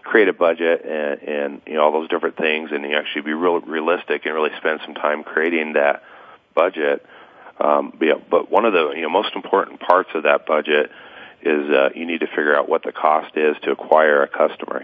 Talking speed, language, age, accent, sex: 220 wpm, English, 40-59, American, male